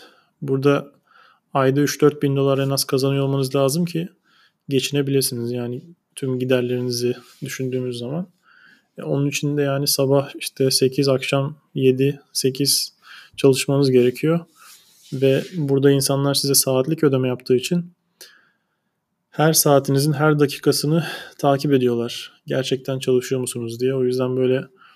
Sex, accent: male, native